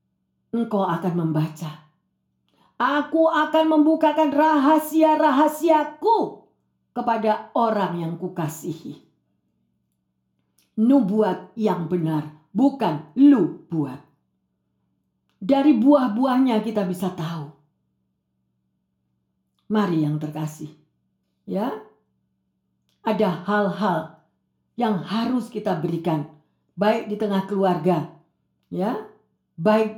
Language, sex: Indonesian, female